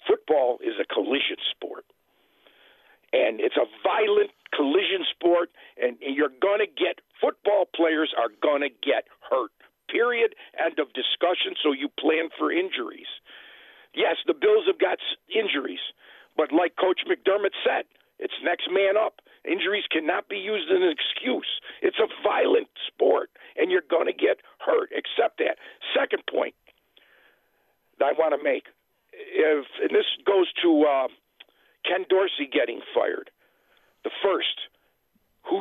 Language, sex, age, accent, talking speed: English, male, 50-69, American, 145 wpm